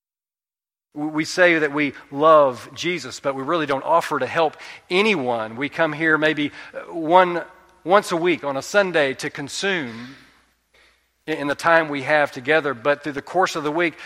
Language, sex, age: English, male, 40-59